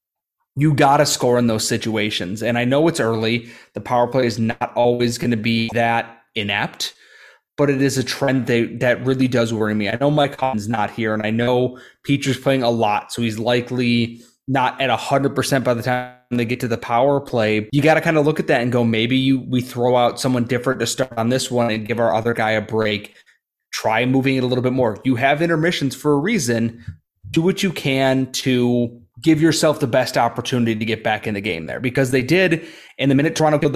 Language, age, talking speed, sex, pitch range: English, 20-39, 230 wpm, male, 115-135 Hz